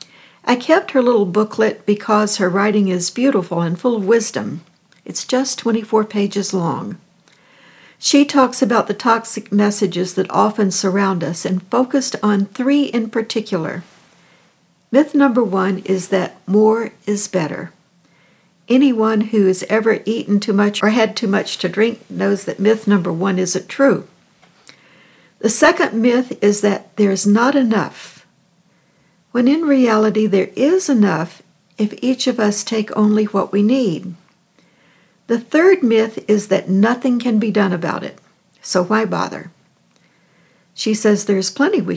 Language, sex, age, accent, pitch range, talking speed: English, female, 60-79, American, 185-230 Hz, 150 wpm